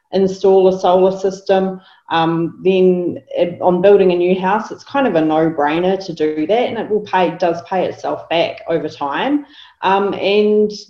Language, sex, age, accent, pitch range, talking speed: English, female, 30-49, Australian, 150-190 Hz, 175 wpm